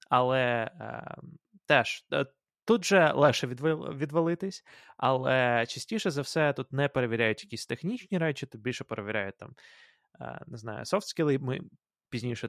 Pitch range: 115-150 Hz